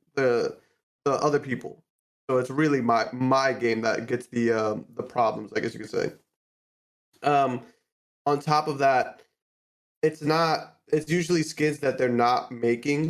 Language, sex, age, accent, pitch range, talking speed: English, male, 20-39, American, 120-150 Hz, 165 wpm